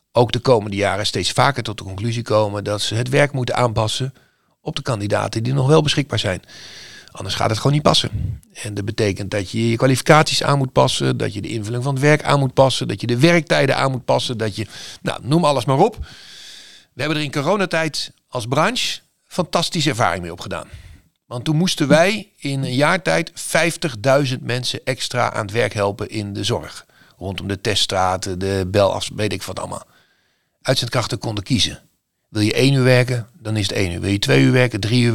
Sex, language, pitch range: male, Dutch, 105-140 Hz